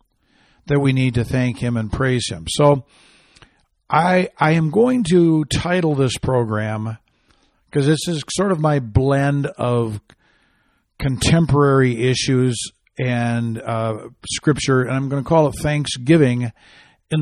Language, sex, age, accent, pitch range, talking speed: English, male, 60-79, American, 120-145 Hz, 135 wpm